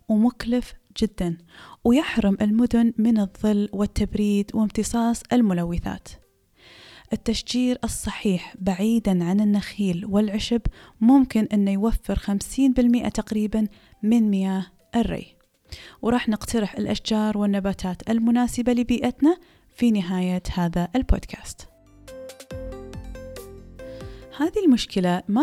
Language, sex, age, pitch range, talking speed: Arabic, female, 20-39, 195-235 Hz, 85 wpm